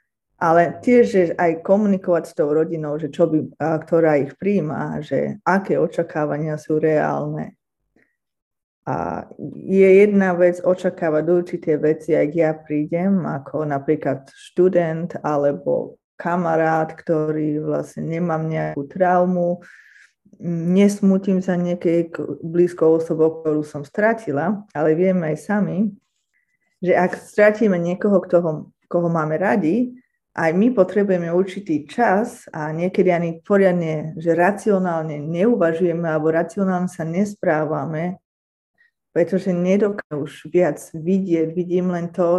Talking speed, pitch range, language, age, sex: 120 wpm, 160-185 Hz, Slovak, 20-39, female